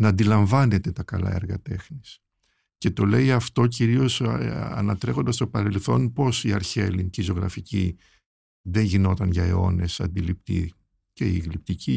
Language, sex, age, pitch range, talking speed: Greek, male, 50-69, 95-120 Hz, 135 wpm